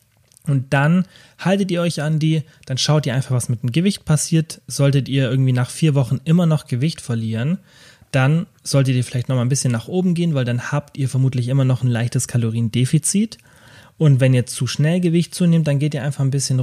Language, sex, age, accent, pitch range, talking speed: German, male, 30-49, German, 125-150 Hz, 215 wpm